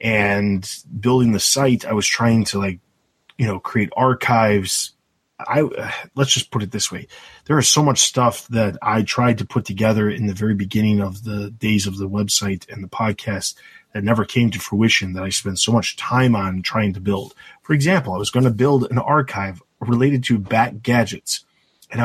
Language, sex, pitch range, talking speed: English, male, 100-125 Hz, 200 wpm